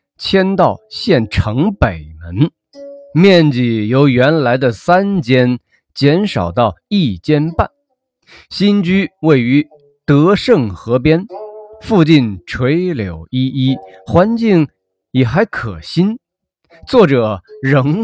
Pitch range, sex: 120-185 Hz, male